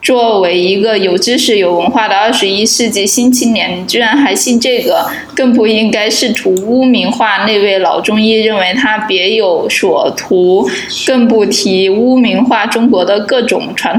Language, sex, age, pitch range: Chinese, female, 20-39, 200-250 Hz